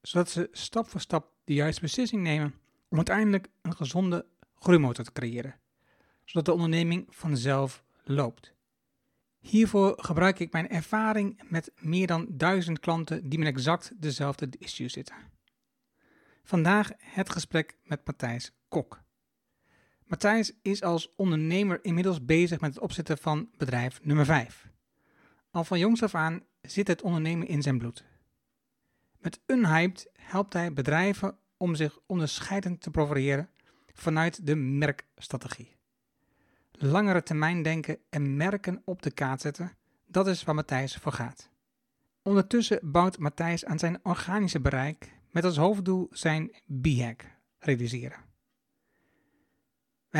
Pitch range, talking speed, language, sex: 150-190 Hz, 130 wpm, Dutch, male